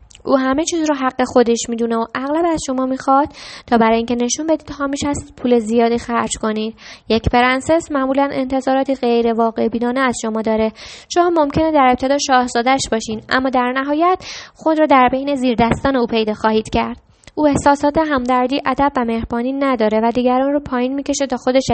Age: 10-29